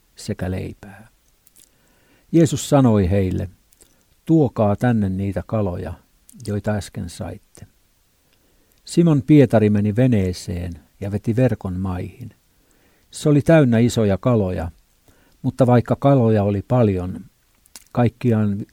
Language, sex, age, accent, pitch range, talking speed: Finnish, male, 60-79, native, 95-125 Hz, 100 wpm